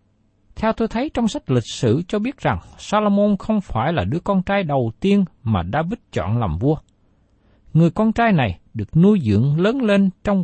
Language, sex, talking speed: Vietnamese, male, 195 wpm